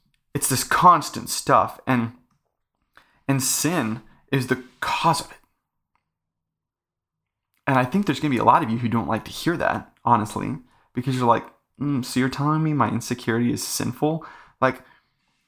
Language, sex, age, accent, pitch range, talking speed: English, male, 30-49, American, 115-145 Hz, 165 wpm